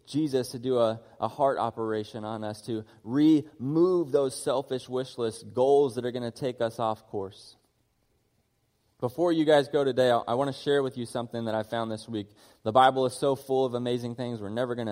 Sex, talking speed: male, 210 wpm